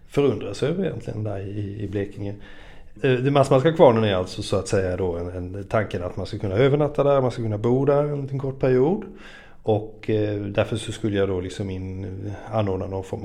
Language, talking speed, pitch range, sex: Swedish, 210 wpm, 100-120 Hz, male